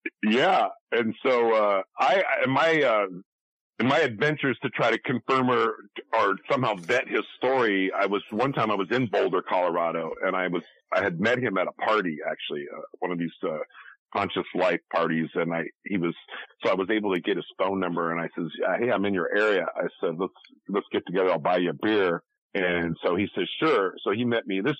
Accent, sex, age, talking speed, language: American, male, 50-69, 220 wpm, English